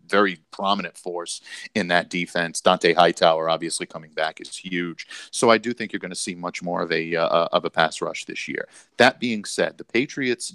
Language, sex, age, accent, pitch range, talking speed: English, male, 40-59, American, 85-95 Hz, 210 wpm